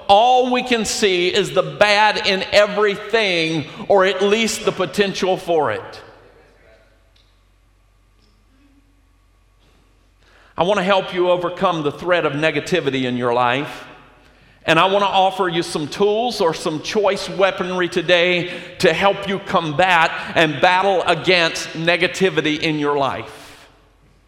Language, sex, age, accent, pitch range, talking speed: English, male, 50-69, American, 140-200 Hz, 130 wpm